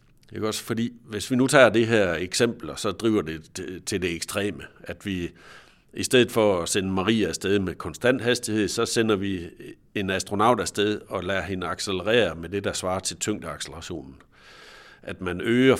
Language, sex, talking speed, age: Danish, male, 180 wpm, 60-79